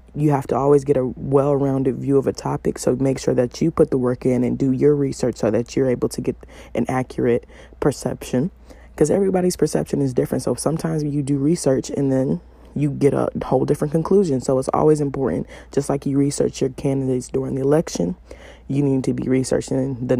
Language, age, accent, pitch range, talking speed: English, 20-39, American, 125-145 Hz, 210 wpm